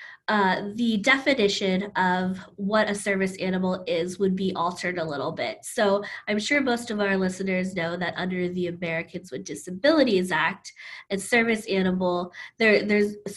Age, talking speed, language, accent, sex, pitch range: 20-39, 155 wpm, English, American, female, 180-210 Hz